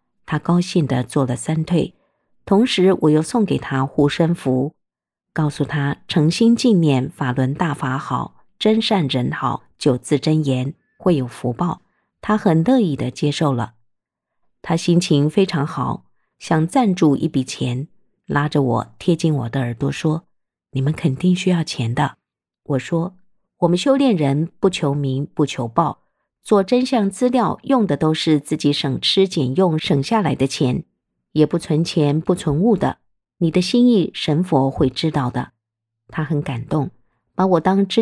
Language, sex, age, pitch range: Chinese, female, 50-69, 135-180 Hz